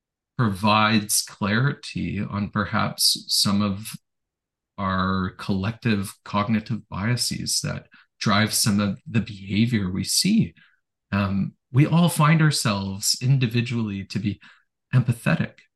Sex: male